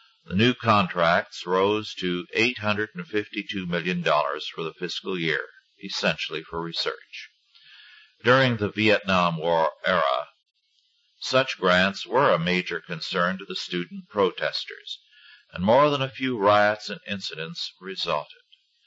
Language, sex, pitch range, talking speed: English, male, 90-130 Hz, 120 wpm